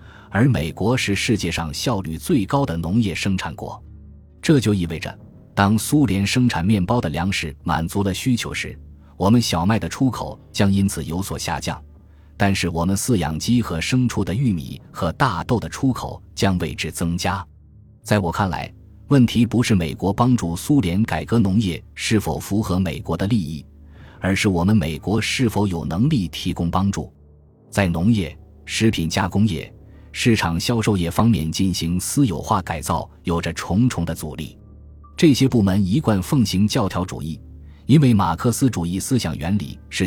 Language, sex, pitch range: Chinese, male, 80-110 Hz